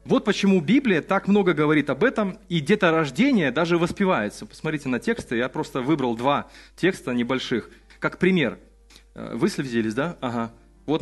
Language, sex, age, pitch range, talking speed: Russian, male, 30-49, 135-190 Hz, 150 wpm